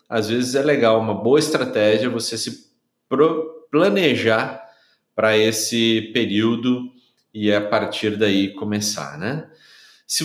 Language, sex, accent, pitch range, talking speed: Portuguese, male, Brazilian, 110-155 Hz, 115 wpm